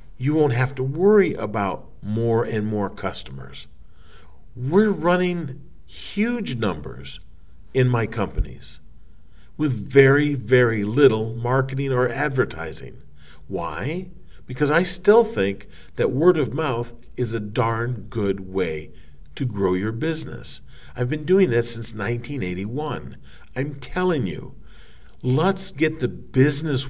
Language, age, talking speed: English, 50-69, 125 wpm